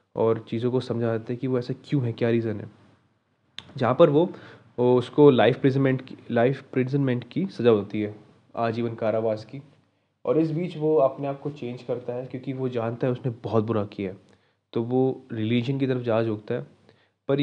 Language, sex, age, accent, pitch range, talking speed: Hindi, male, 20-39, native, 110-130 Hz, 195 wpm